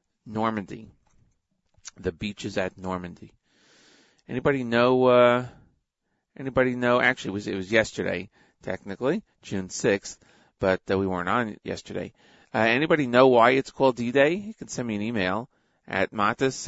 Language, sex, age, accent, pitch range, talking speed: English, male, 30-49, American, 100-125 Hz, 150 wpm